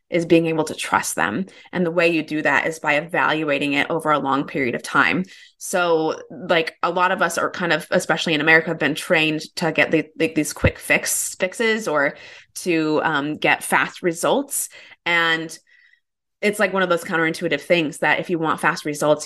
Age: 20-39